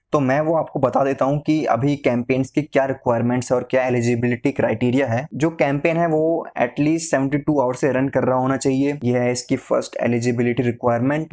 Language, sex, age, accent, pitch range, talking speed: Hindi, male, 20-39, native, 125-150 Hz, 200 wpm